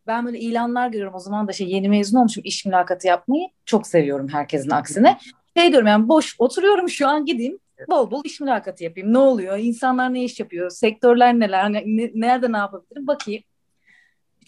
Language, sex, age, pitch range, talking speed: Turkish, female, 30-49, 175-255 Hz, 185 wpm